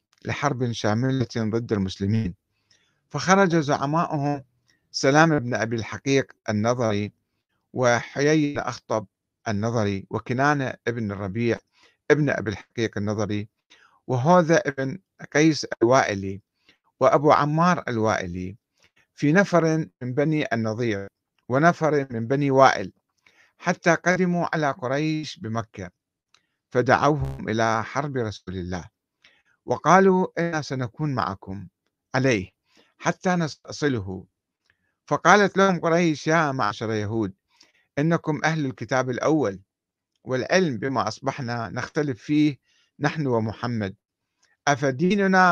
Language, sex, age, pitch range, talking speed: Arabic, male, 50-69, 110-150 Hz, 95 wpm